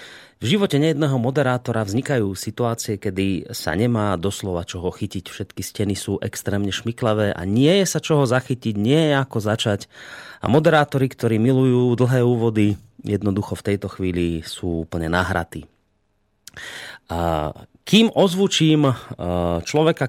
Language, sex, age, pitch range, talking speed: Slovak, male, 30-49, 100-135 Hz, 130 wpm